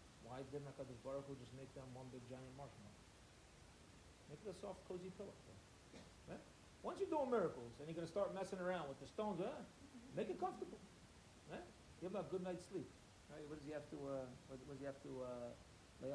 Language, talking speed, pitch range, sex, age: English, 215 wpm, 110-175 Hz, male, 40-59